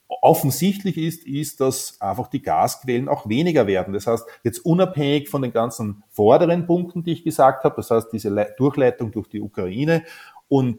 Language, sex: German, male